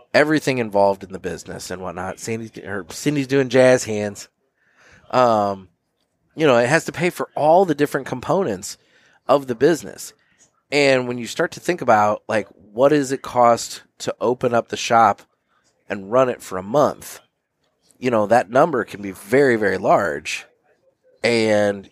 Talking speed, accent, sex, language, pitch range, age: 165 wpm, American, male, English, 105-140 Hz, 30-49